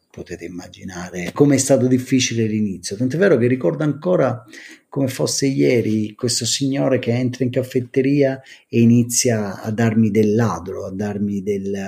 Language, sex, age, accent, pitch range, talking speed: Italian, male, 40-59, native, 105-130 Hz, 150 wpm